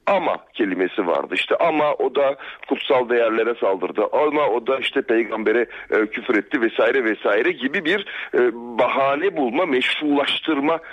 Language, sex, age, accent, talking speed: Turkish, male, 60-79, native, 145 wpm